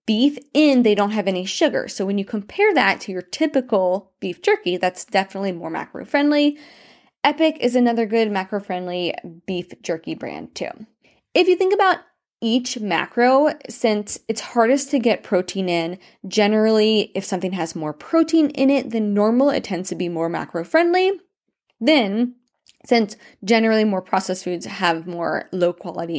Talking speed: 160 wpm